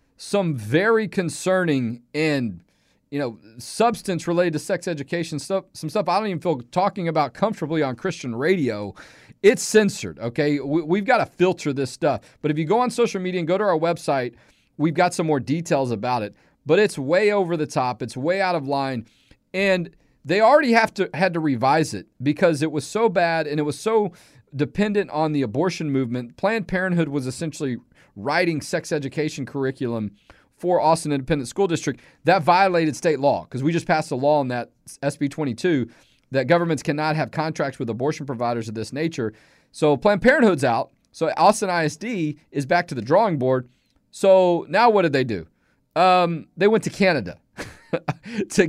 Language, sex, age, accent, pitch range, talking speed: English, male, 40-59, American, 140-185 Hz, 185 wpm